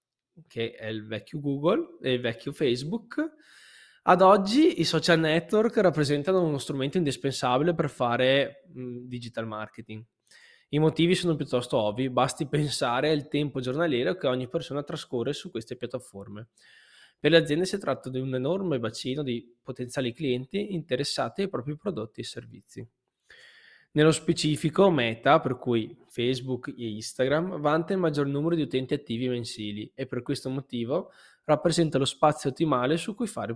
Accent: native